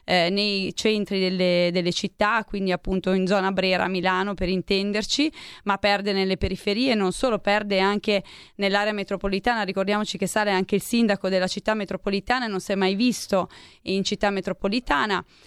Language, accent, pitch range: Italian, native, 195-225 Hz